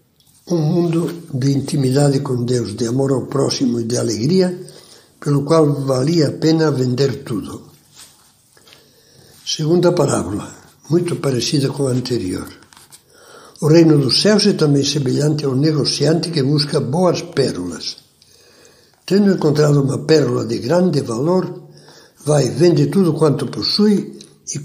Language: Portuguese